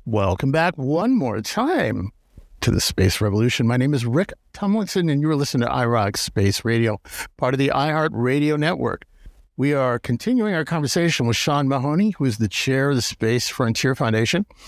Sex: male